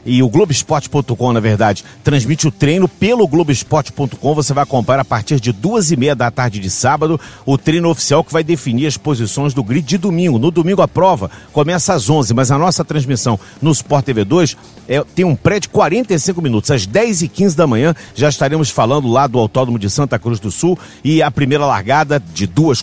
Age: 50-69